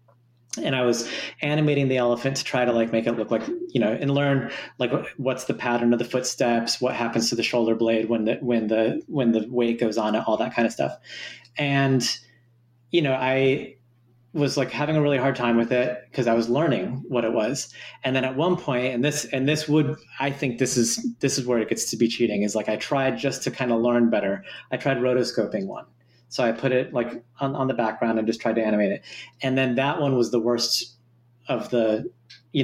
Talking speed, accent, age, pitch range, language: 230 wpm, American, 30-49, 115-135 Hz, English